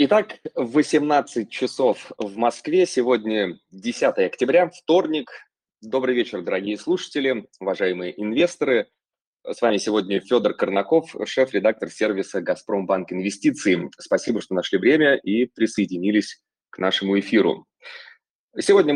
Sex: male